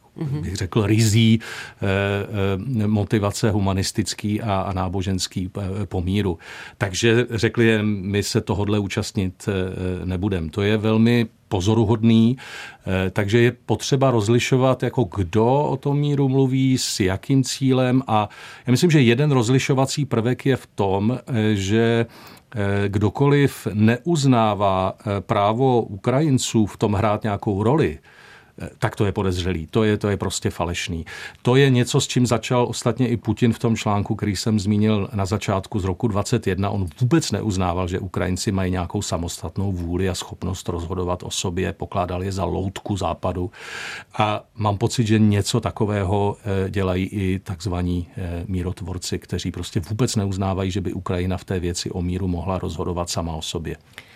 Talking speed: 140 wpm